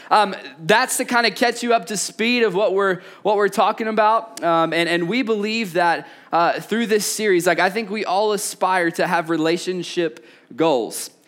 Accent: American